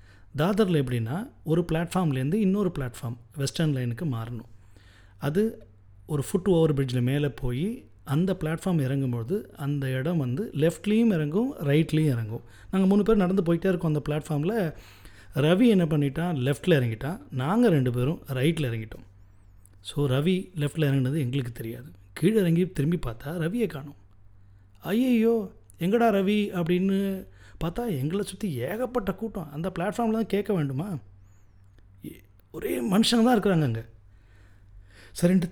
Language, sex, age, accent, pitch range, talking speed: Tamil, male, 30-49, native, 125-185 Hz, 130 wpm